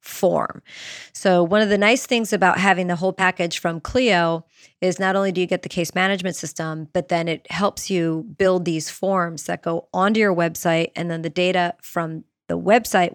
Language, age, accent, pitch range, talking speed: English, 30-49, American, 170-205 Hz, 200 wpm